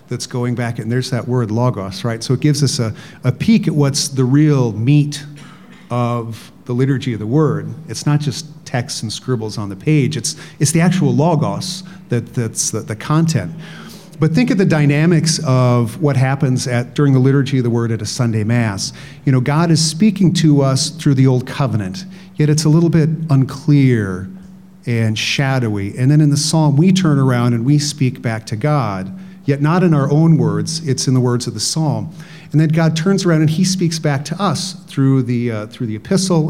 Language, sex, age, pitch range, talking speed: English, male, 40-59, 120-160 Hz, 210 wpm